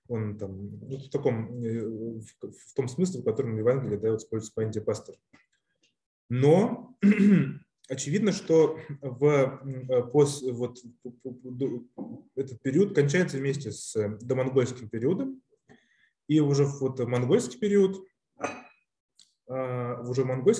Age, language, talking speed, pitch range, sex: 20-39, Russian, 75 wpm, 125-155 Hz, male